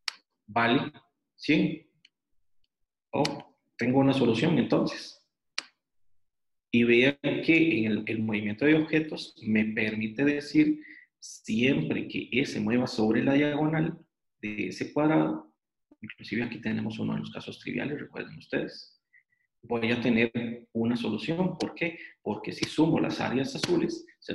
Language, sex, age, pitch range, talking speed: Spanish, male, 40-59, 115-165 Hz, 135 wpm